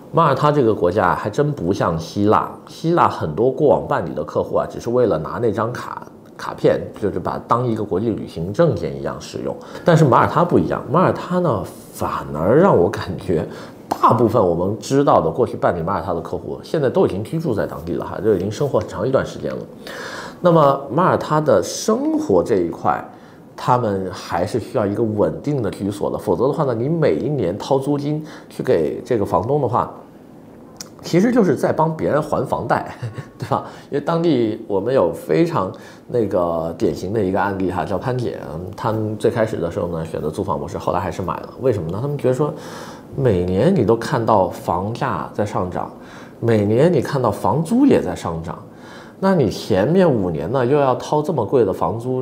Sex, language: male, Chinese